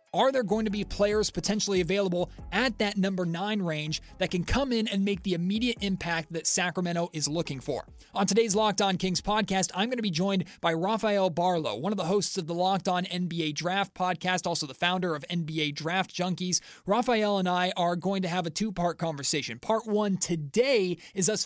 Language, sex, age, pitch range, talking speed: English, male, 30-49, 165-200 Hz, 210 wpm